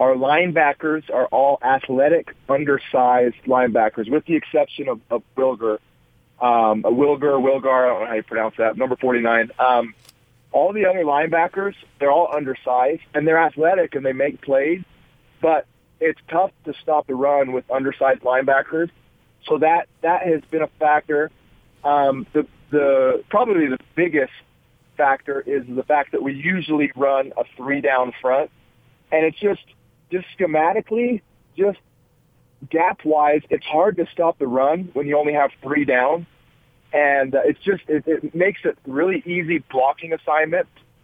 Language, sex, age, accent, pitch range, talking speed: English, male, 40-59, American, 125-160 Hz, 155 wpm